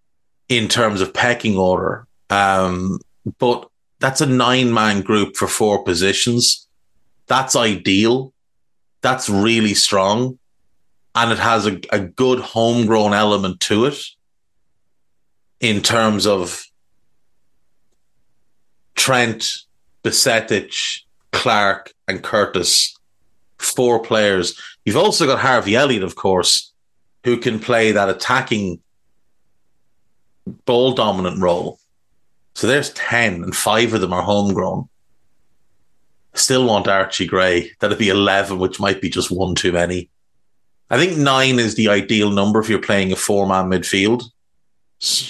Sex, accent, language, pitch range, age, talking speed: male, Irish, English, 95-115 Hz, 30-49, 120 wpm